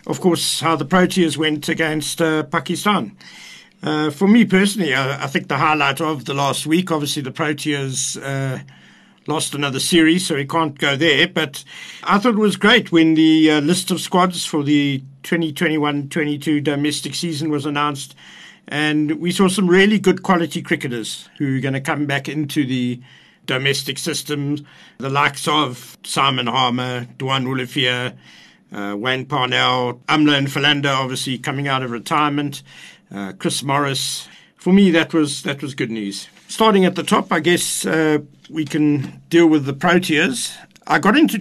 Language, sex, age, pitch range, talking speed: English, male, 60-79, 135-165 Hz, 165 wpm